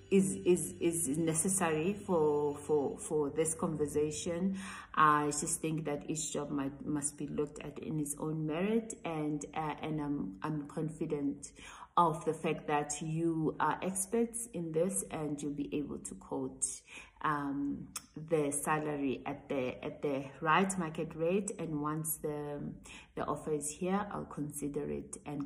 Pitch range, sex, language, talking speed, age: 150-175 Hz, female, English, 160 wpm, 30-49